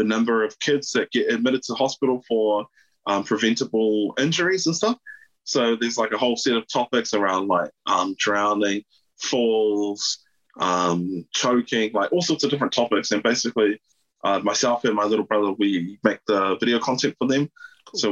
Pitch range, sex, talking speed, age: 105-135 Hz, male, 170 wpm, 20-39